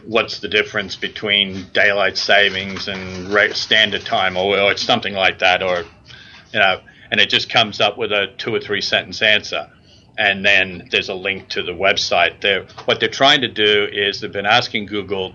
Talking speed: 190 wpm